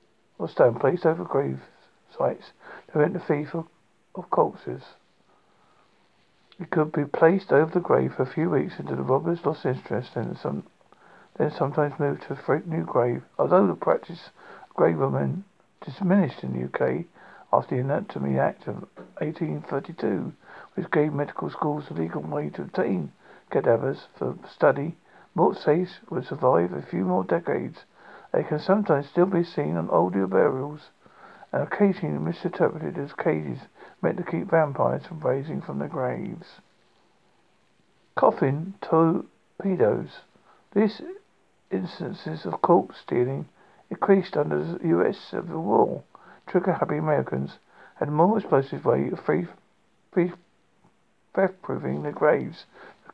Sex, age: male, 50-69